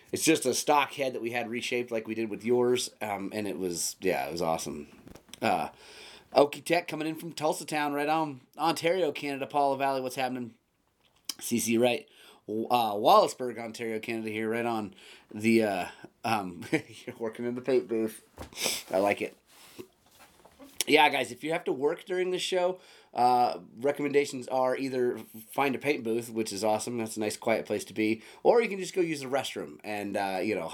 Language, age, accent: English, 30-49, American